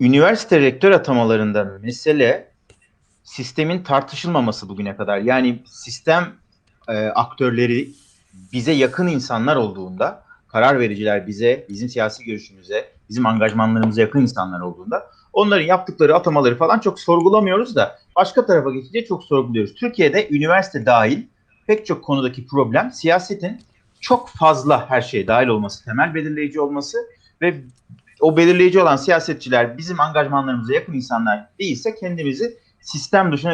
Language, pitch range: Turkish, 120-180 Hz